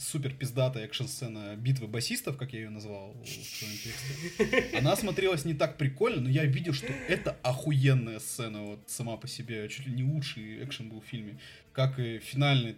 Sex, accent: male, native